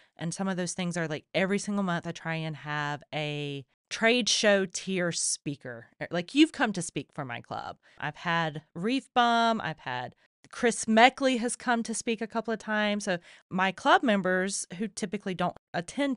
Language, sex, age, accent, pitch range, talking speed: English, female, 30-49, American, 160-225 Hz, 190 wpm